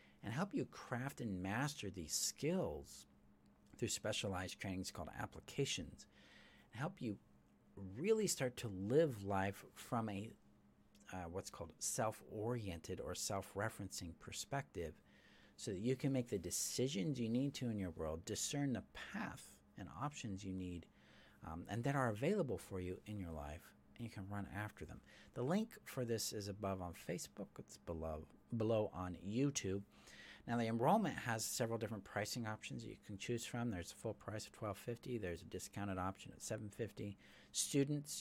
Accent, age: American, 50-69